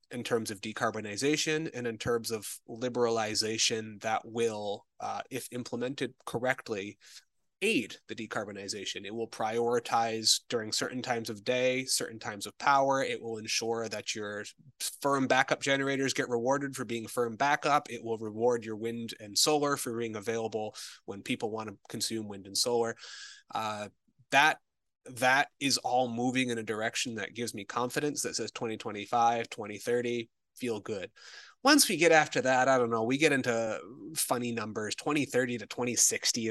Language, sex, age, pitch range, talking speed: English, male, 20-39, 110-130 Hz, 160 wpm